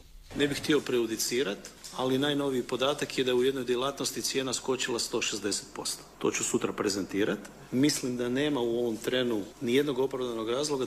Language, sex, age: Croatian, male, 40-59